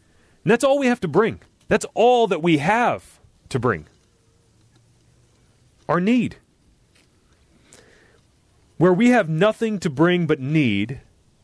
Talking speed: 125 wpm